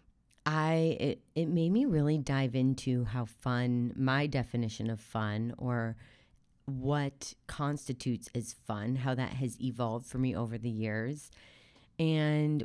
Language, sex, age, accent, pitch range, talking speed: English, female, 30-49, American, 120-145 Hz, 140 wpm